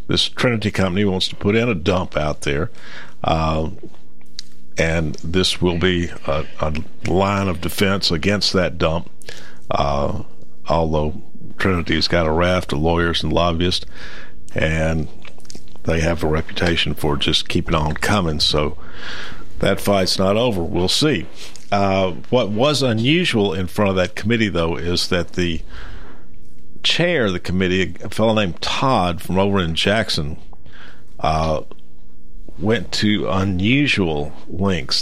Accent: American